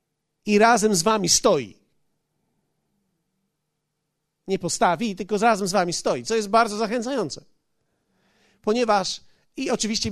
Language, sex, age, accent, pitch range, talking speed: Polish, male, 40-59, native, 180-240 Hz, 115 wpm